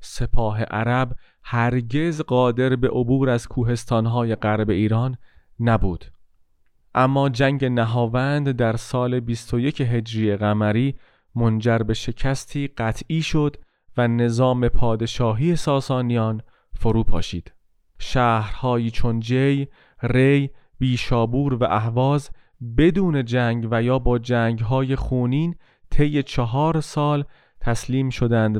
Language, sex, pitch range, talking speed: Persian, male, 115-135 Hz, 100 wpm